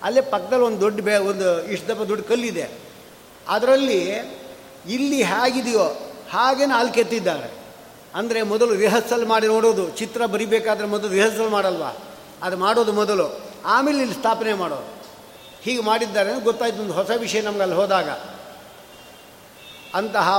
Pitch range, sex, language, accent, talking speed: 200-235 Hz, male, Kannada, native, 130 wpm